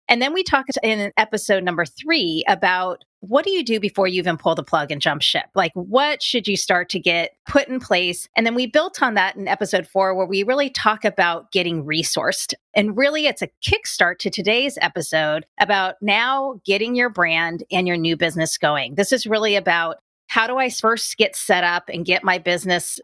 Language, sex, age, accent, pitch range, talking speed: English, female, 30-49, American, 175-245 Hz, 210 wpm